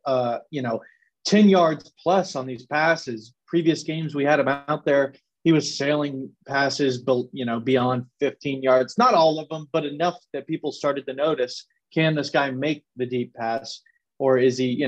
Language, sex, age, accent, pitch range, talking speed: English, male, 30-49, American, 130-165 Hz, 195 wpm